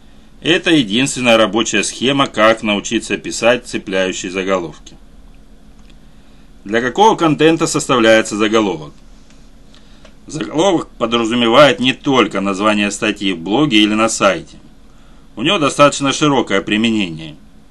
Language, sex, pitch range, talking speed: Russian, male, 100-125 Hz, 100 wpm